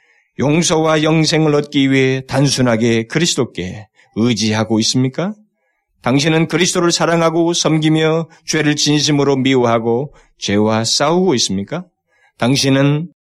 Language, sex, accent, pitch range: Korean, male, native, 115-160 Hz